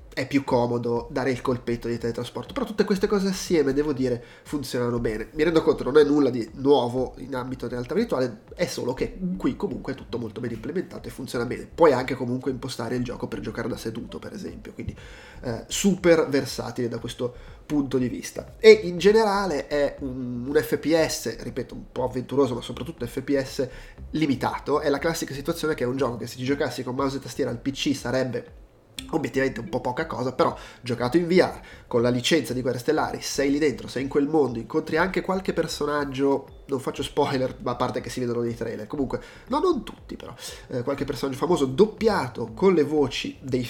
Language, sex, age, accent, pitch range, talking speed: Italian, male, 20-39, native, 120-155 Hz, 205 wpm